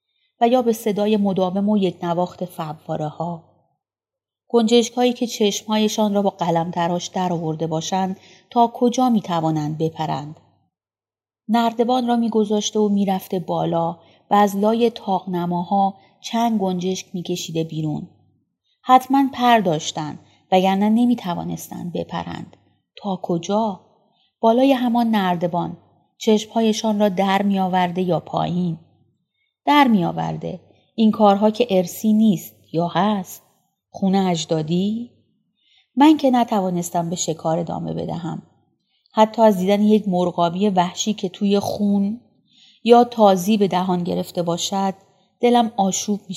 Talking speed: 120 wpm